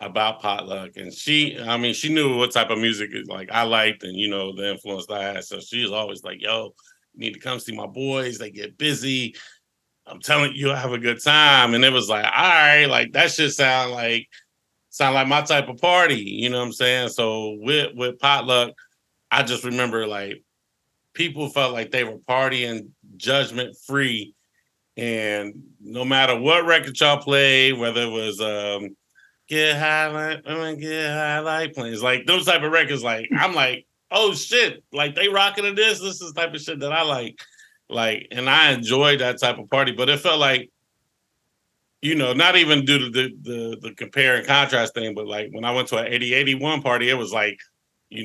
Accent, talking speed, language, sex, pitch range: American, 210 wpm, English, male, 115-150 Hz